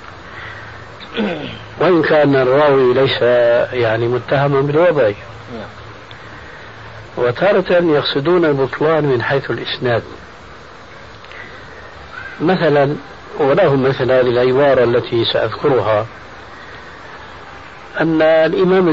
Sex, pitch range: male, 115-150 Hz